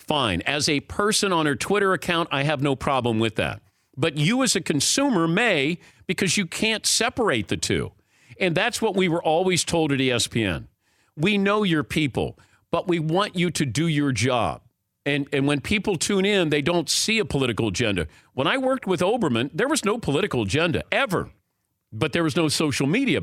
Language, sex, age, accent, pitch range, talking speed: English, male, 50-69, American, 125-180 Hz, 195 wpm